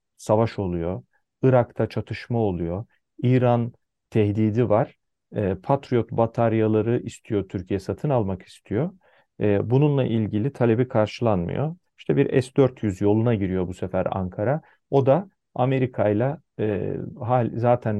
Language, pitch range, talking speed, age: Turkish, 100-125 Hz, 105 wpm, 40-59